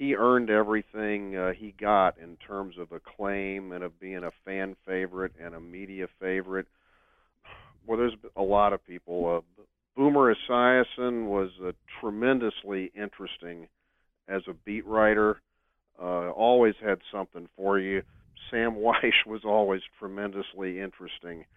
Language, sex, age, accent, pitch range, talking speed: English, male, 50-69, American, 95-120 Hz, 135 wpm